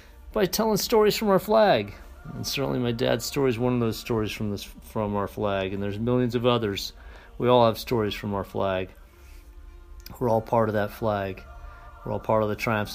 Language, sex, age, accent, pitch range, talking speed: English, male, 50-69, American, 100-125 Hz, 210 wpm